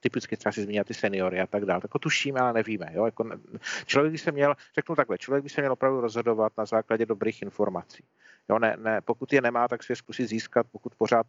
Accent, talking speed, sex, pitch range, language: native, 235 wpm, male, 105-125 Hz, Czech